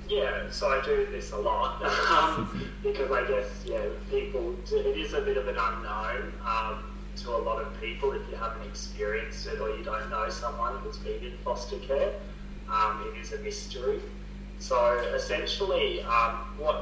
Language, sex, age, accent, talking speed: English, male, 20-39, Australian, 180 wpm